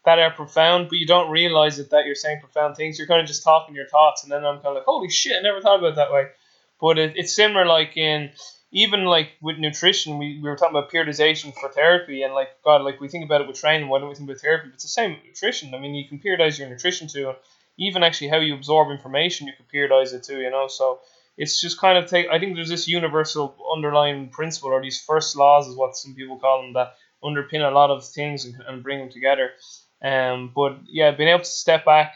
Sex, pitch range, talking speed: male, 135-155 Hz, 260 wpm